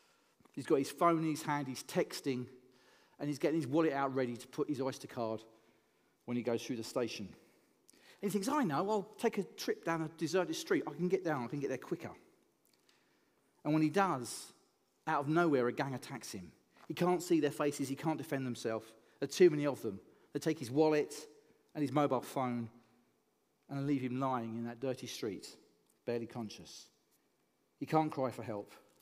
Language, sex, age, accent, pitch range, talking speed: English, male, 40-59, British, 120-155 Hz, 205 wpm